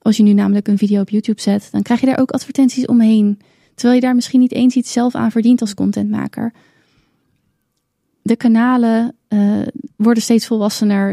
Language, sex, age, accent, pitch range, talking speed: Dutch, female, 20-39, Dutch, 205-235 Hz, 185 wpm